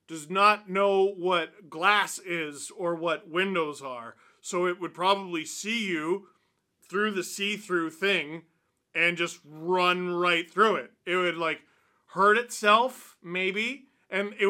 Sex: male